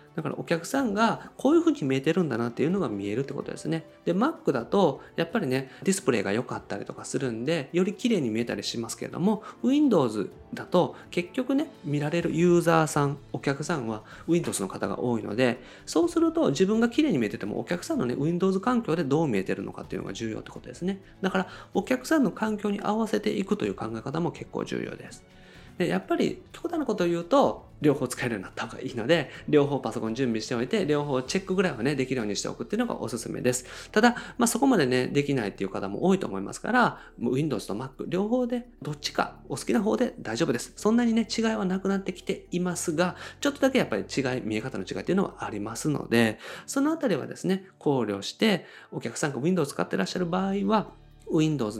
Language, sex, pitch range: Japanese, male, 125-210 Hz